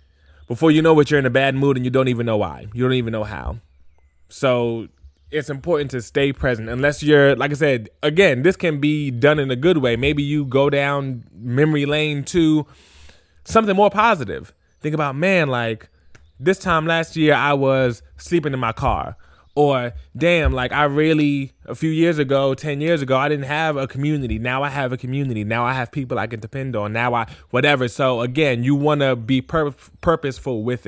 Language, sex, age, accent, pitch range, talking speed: English, male, 20-39, American, 115-145 Hz, 205 wpm